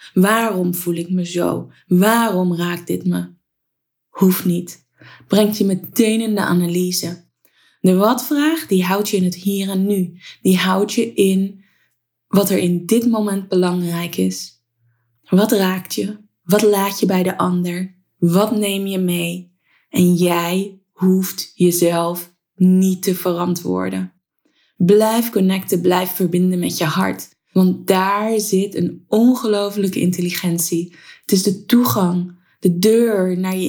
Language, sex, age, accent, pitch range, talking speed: Dutch, female, 20-39, Dutch, 175-205 Hz, 140 wpm